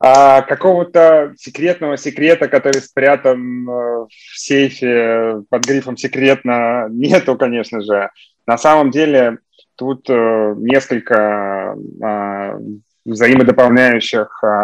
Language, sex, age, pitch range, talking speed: Russian, male, 20-39, 115-140 Hz, 80 wpm